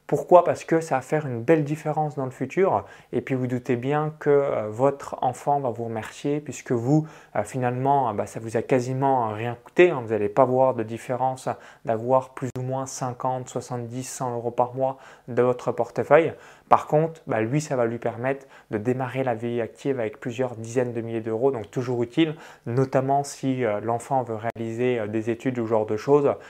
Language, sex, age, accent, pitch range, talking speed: French, male, 20-39, French, 120-150 Hz, 195 wpm